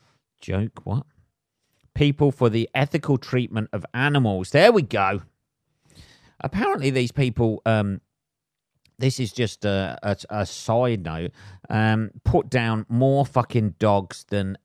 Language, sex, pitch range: English, male, 100-120 Hz